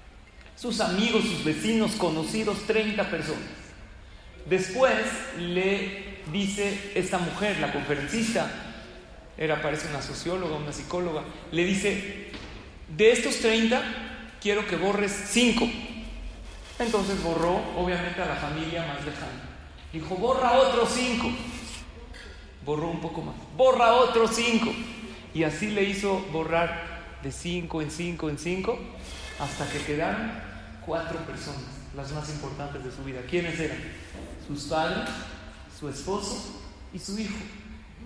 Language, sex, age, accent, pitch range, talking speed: Spanish, male, 40-59, Mexican, 145-215 Hz, 125 wpm